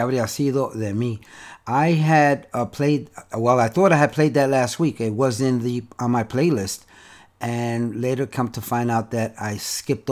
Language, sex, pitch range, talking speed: Spanish, male, 120-155 Hz, 190 wpm